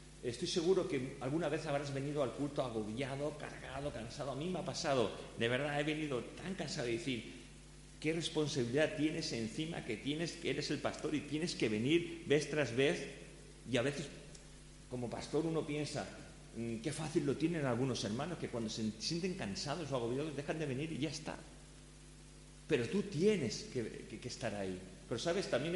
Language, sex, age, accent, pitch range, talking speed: Spanish, male, 40-59, Spanish, 110-150 Hz, 185 wpm